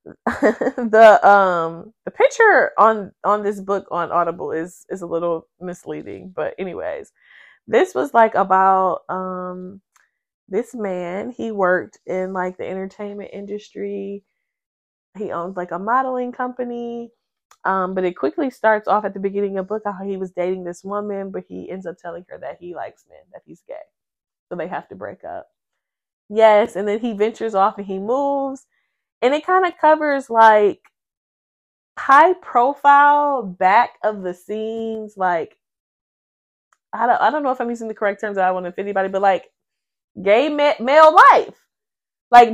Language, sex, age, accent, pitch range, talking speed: English, female, 20-39, American, 190-250 Hz, 170 wpm